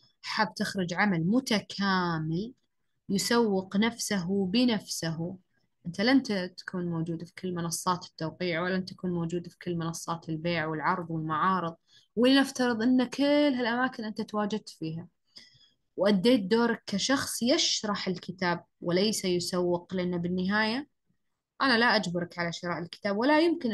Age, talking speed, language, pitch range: 20-39, 120 wpm, Arabic, 175-230 Hz